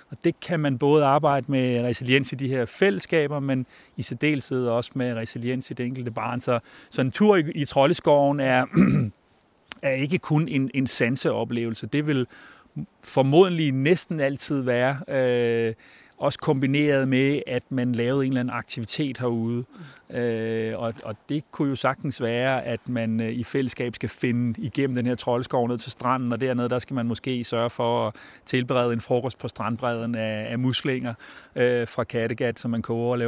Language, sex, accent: Danish, male, native